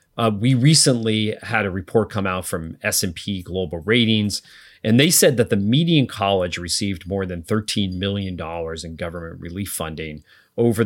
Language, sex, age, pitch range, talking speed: English, male, 30-49, 85-115 Hz, 160 wpm